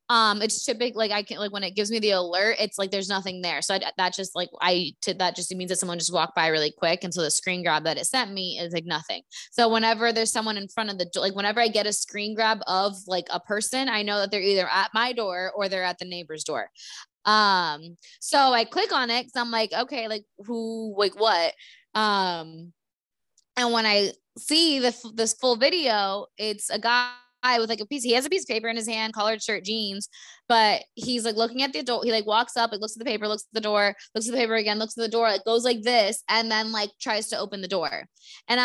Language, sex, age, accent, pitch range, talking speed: English, female, 20-39, American, 190-230 Hz, 255 wpm